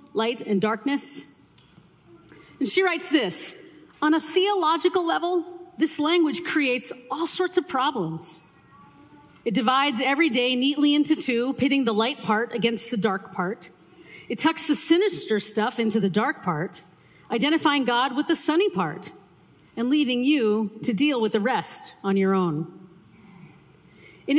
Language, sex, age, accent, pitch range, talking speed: English, female, 40-59, American, 220-315 Hz, 150 wpm